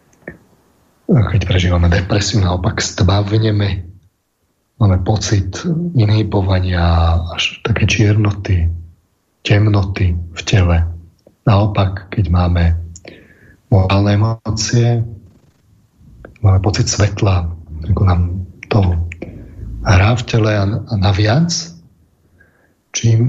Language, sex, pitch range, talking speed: Slovak, male, 95-110 Hz, 80 wpm